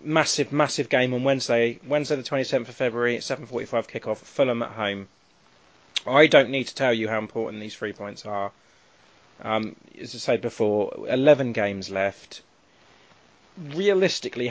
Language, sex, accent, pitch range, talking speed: English, male, British, 105-140 Hz, 150 wpm